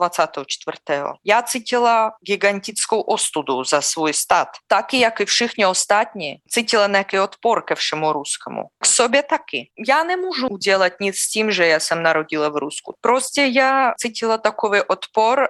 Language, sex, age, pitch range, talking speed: Czech, female, 20-39, 180-225 Hz, 145 wpm